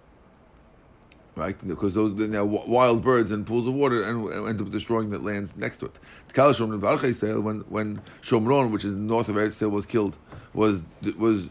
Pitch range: 100-125 Hz